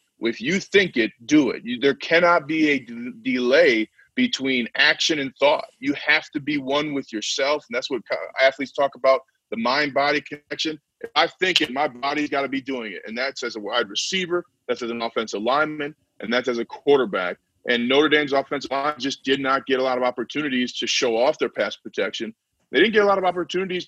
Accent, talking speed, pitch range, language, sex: American, 210 wpm, 135-175 Hz, English, male